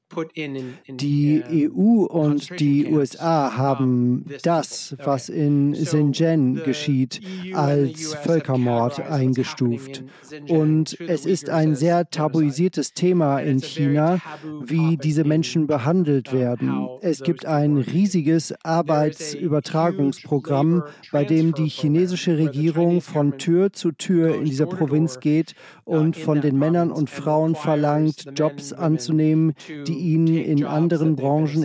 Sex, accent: male, German